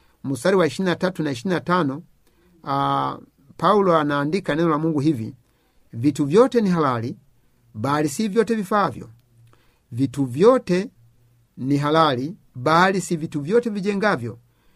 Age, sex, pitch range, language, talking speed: 50-69, male, 140-185 Hz, Swahili, 120 wpm